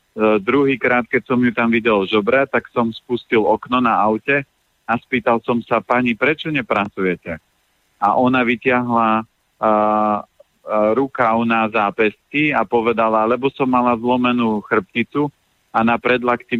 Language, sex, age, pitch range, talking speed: Slovak, male, 40-59, 100-115 Hz, 135 wpm